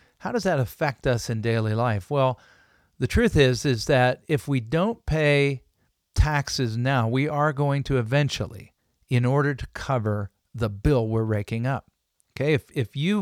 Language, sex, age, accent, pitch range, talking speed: English, male, 50-69, American, 115-145 Hz, 175 wpm